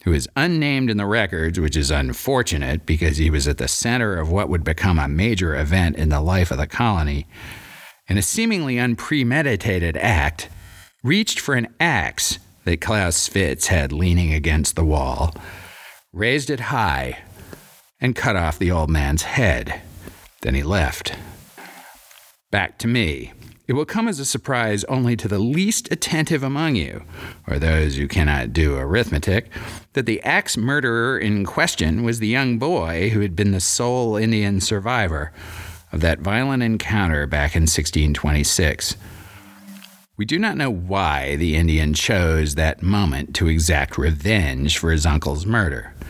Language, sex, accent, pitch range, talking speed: English, male, American, 80-115 Hz, 155 wpm